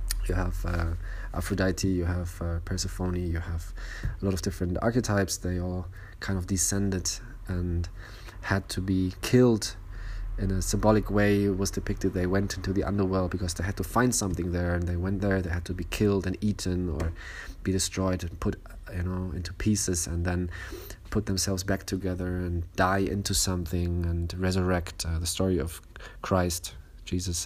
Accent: German